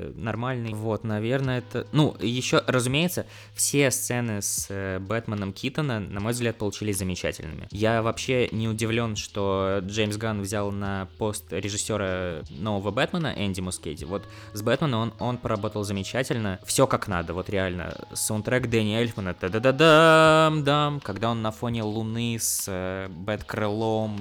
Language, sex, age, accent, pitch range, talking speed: Russian, male, 20-39, native, 100-125 Hz, 140 wpm